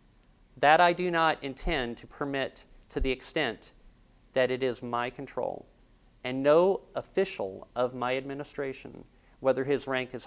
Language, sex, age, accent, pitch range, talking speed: English, male, 50-69, American, 125-150 Hz, 145 wpm